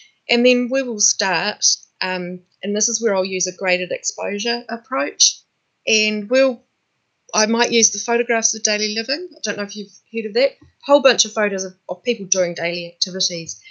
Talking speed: 195 wpm